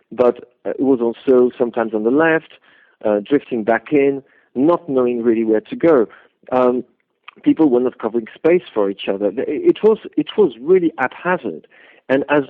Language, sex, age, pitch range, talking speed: English, male, 50-69, 125-180 Hz, 170 wpm